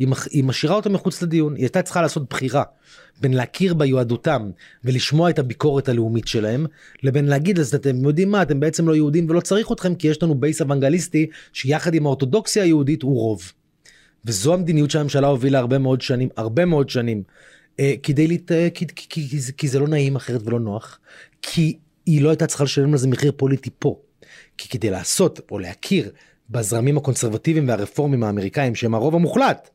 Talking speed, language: 165 wpm, Hebrew